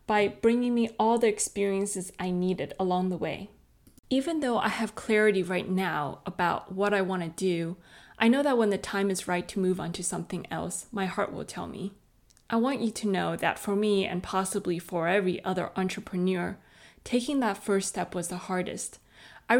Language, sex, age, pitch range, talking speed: English, female, 20-39, 185-225 Hz, 200 wpm